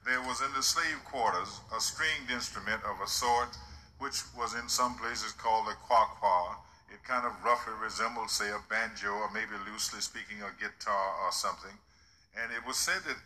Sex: male